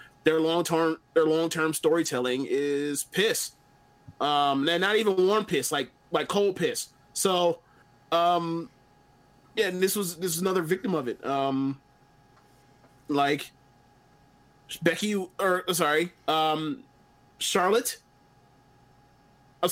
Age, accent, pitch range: 20-39, American, 140-175 Hz